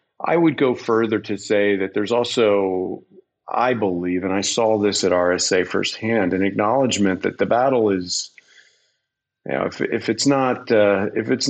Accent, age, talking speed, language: American, 50-69, 170 wpm, English